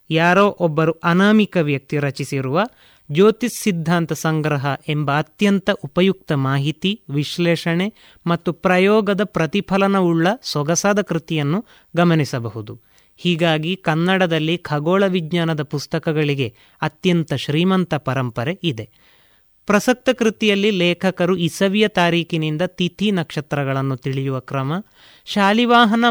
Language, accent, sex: Kannada, native, male